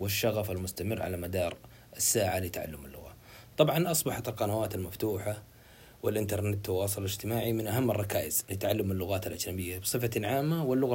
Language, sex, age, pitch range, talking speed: Arabic, male, 30-49, 100-120 Hz, 125 wpm